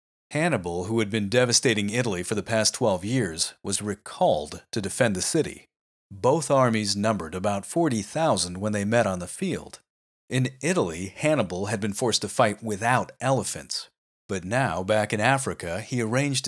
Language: English